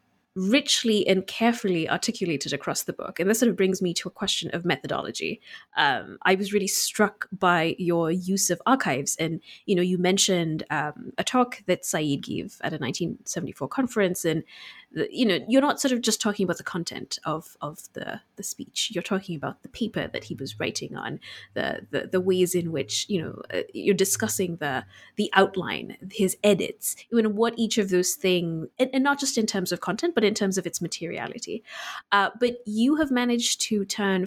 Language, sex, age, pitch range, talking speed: English, female, 20-39, 180-235 Hz, 200 wpm